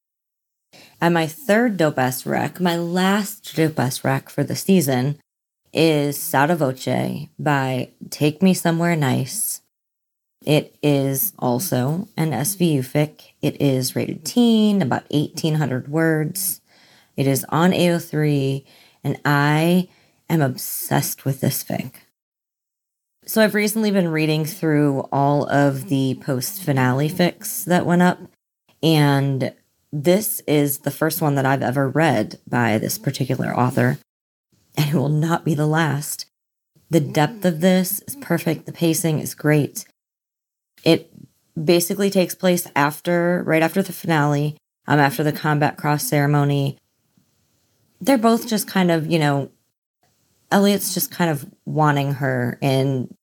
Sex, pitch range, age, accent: female, 140-175 Hz, 30-49, American